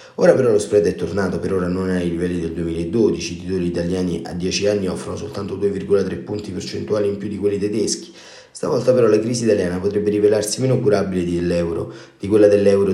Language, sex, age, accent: Italian, male, 30-49, native